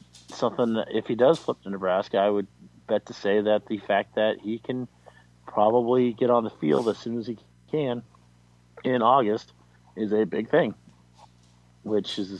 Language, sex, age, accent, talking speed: English, male, 40-59, American, 185 wpm